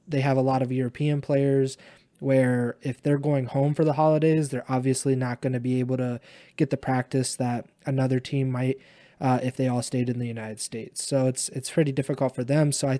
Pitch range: 125-140 Hz